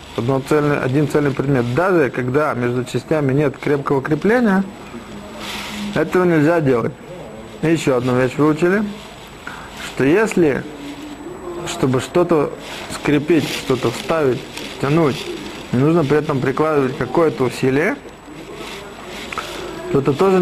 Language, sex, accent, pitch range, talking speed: Russian, male, native, 135-170 Hz, 105 wpm